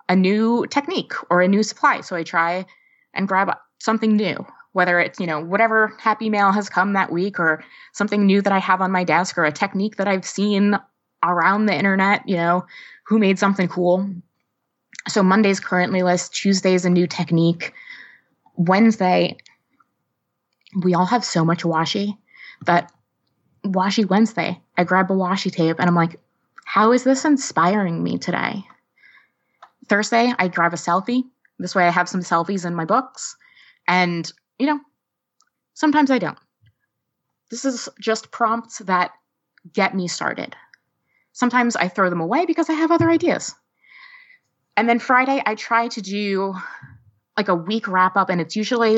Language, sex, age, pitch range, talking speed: English, female, 20-39, 175-220 Hz, 165 wpm